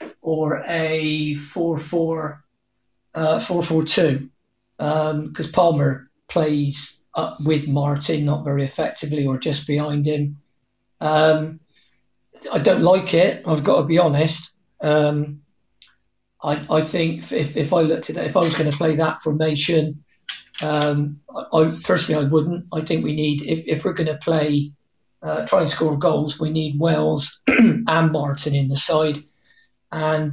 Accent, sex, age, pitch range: British, male, 40-59, 145-160 Hz